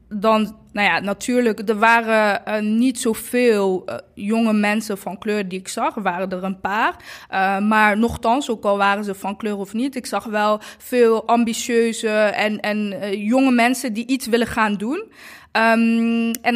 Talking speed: 175 wpm